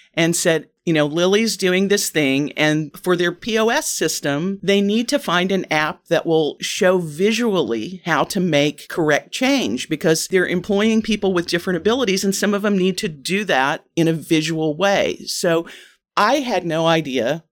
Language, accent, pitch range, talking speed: English, American, 160-210 Hz, 180 wpm